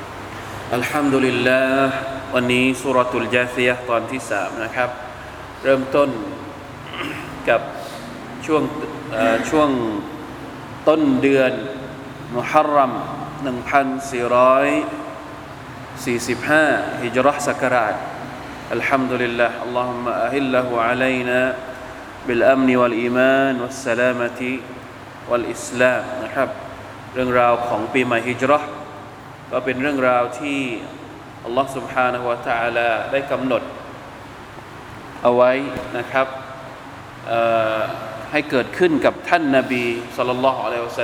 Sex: male